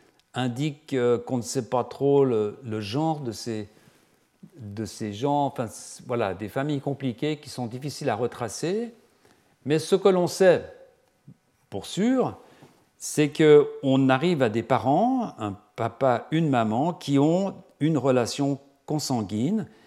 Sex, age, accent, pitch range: male, 50-69, French, 110-160 Hz